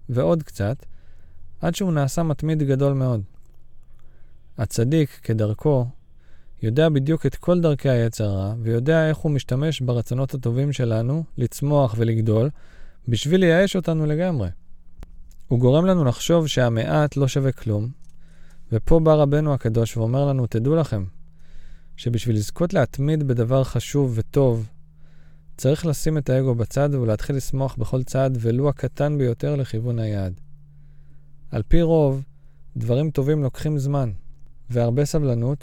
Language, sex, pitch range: Hebrew, male, 110-145 Hz